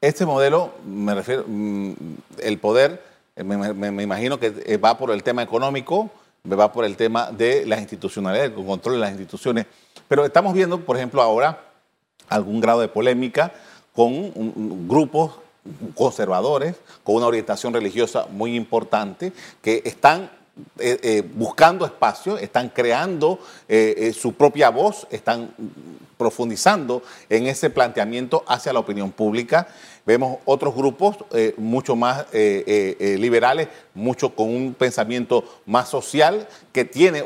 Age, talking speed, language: 40-59, 140 wpm, Spanish